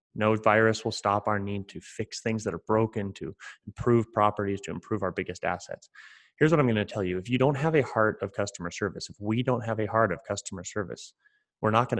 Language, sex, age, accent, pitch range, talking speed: English, male, 30-49, American, 100-120 Hz, 240 wpm